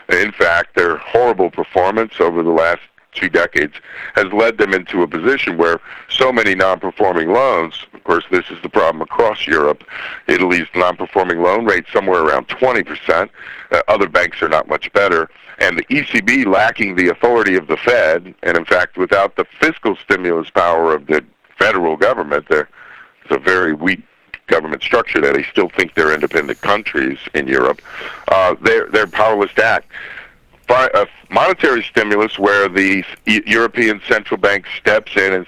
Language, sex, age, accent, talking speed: English, male, 60-79, American, 165 wpm